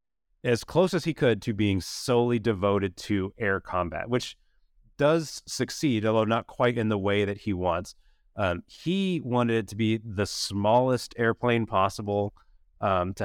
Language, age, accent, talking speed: English, 30-49, American, 165 wpm